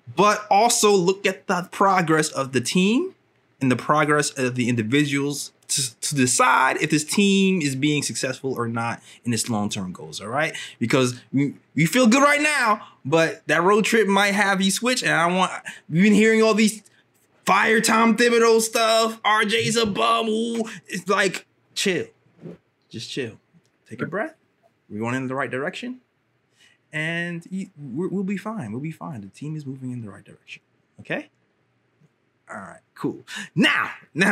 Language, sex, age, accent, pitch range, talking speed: English, male, 20-39, American, 125-205 Hz, 170 wpm